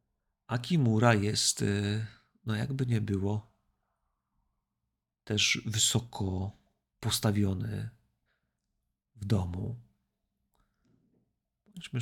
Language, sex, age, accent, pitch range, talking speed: Polish, male, 40-59, native, 105-120 Hz, 65 wpm